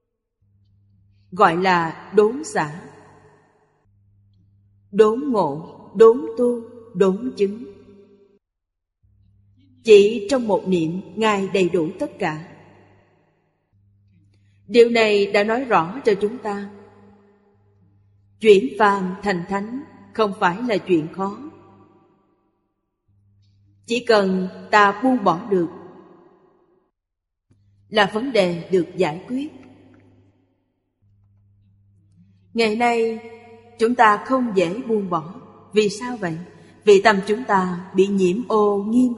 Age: 30-49